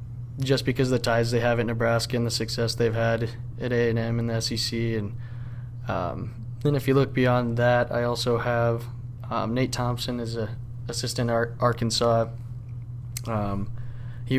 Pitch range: 115-120 Hz